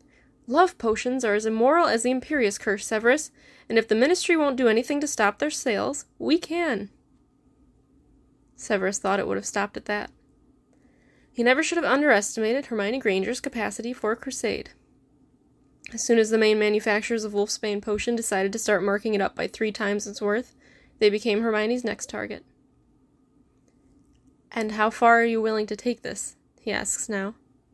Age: 10-29